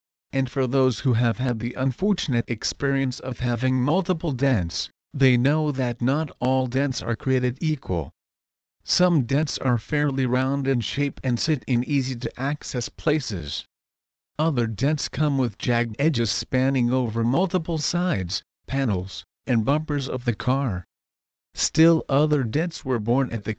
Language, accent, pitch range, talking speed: English, American, 115-140 Hz, 145 wpm